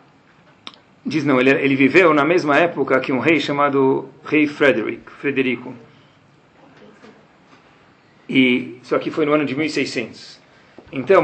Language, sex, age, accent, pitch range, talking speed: Portuguese, male, 40-59, Brazilian, 135-220 Hz, 130 wpm